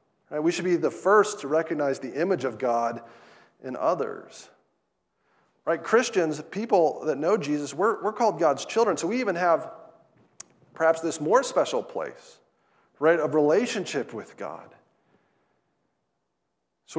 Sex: male